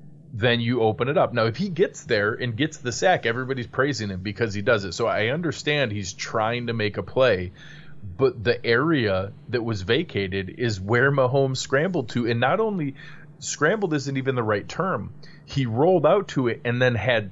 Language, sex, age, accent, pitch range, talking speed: English, male, 30-49, American, 105-145 Hz, 200 wpm